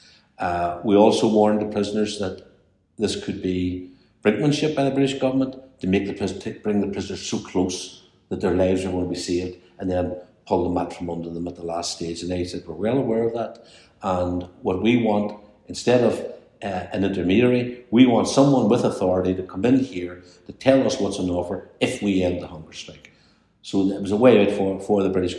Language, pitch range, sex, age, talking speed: English, 90-105 Hz, male, 60-79, 215 wpm